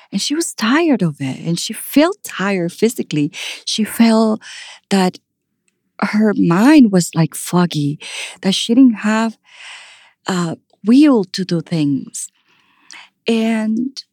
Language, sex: English, female